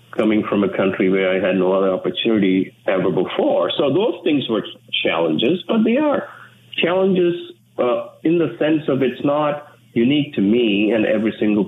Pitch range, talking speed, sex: 95-125 Hz, 175 wpm, male